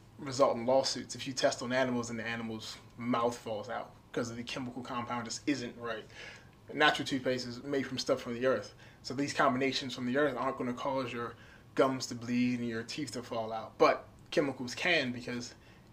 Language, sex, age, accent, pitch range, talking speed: English, male, 20-39, American, 115-135 Hz, 205 wpm